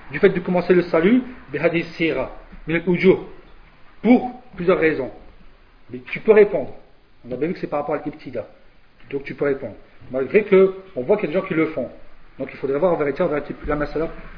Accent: French